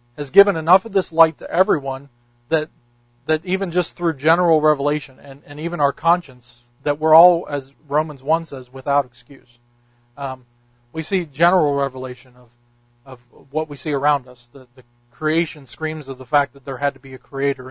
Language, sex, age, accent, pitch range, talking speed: English, male, 40-59, American, 125-155 Hz, 185 wpm